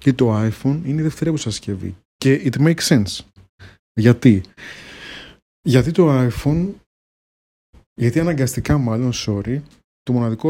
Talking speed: 120 wpm